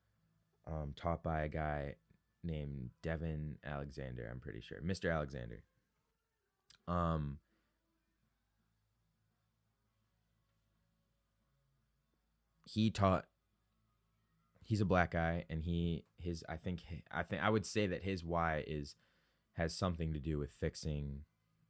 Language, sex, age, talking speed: English, male, 20-39, 110 wpm